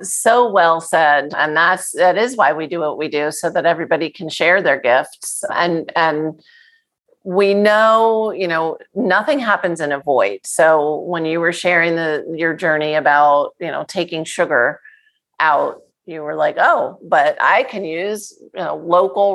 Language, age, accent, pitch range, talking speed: English, 40-59, American, 155-195 Hz, 165 wpm